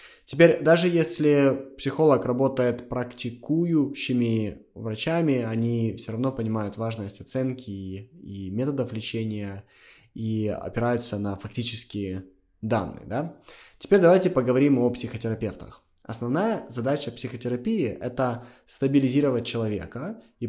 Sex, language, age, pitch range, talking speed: male, Russian, 20-39, 110-140 Hz, 105 wpm